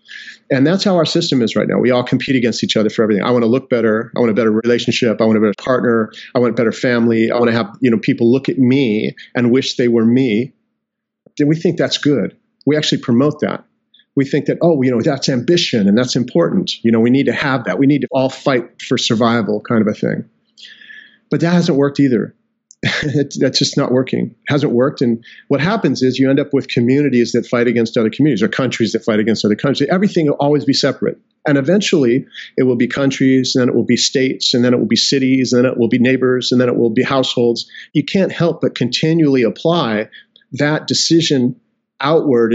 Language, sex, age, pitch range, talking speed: English, male, 40-59, 120-150 Hz, 230 wpm